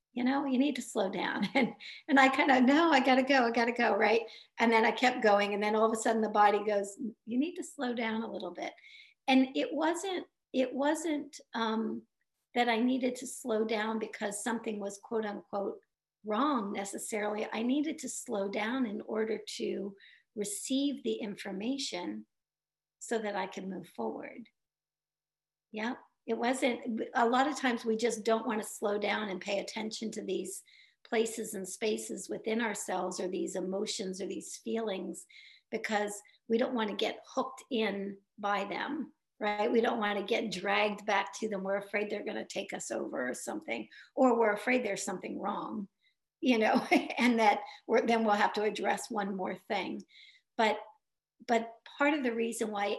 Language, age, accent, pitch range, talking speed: English, 50-69, American, 205-255 Hz, 190 wpm